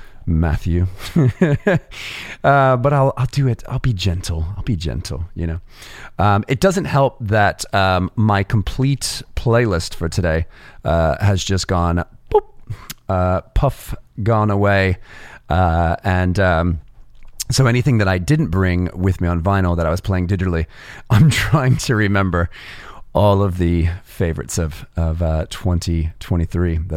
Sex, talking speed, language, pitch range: male, 140 wpm, English, 85-115 Hz